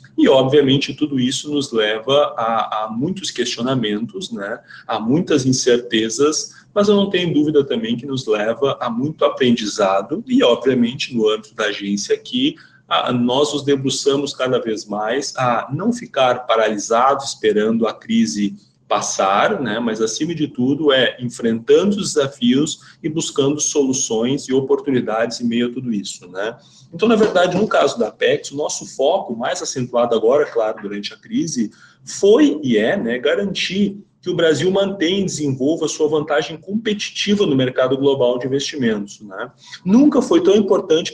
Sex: male